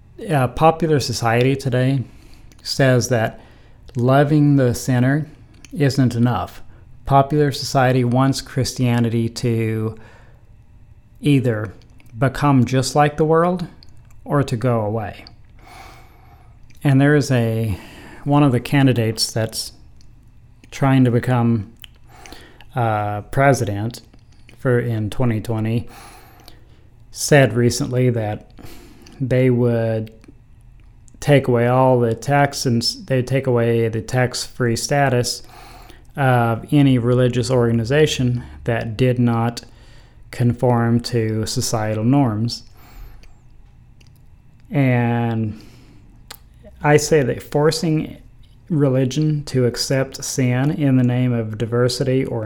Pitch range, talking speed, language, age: 115-135 Hz, 100 wpm, English, 40-59